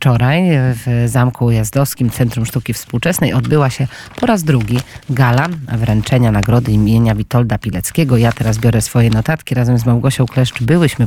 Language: Polish